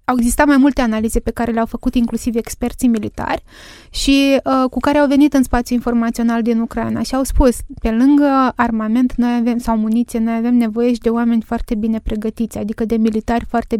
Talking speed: 200 wpm